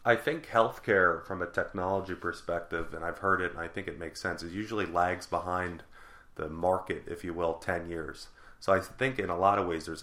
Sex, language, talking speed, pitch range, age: male, English, 220 wpm, 85-95 Hz, 30-49